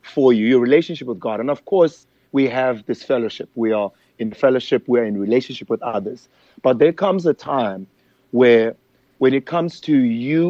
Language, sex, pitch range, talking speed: English, male, 120-155 Hz, 195 wpm